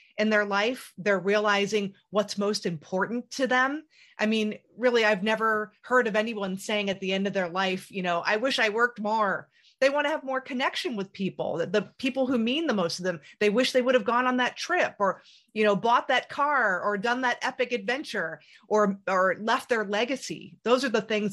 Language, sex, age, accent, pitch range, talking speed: English, female, 30-49, American, 190-245 Hz, 215 wpm